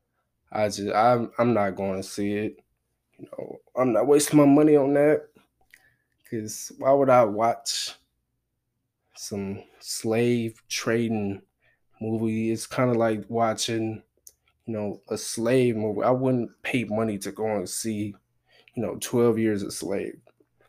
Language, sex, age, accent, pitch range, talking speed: English, male, 20-39, American, 105-125 Hz, 145 wpm